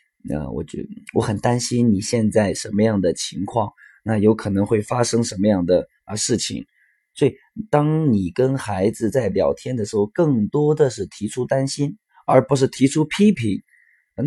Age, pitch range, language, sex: 20-39, 105-135 Hz, Chinese, male